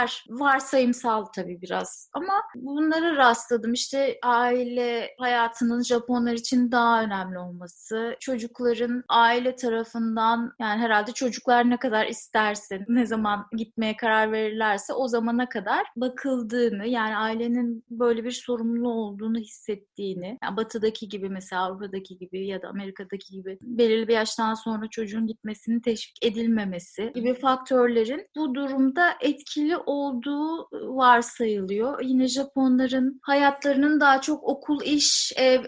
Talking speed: 120 wpm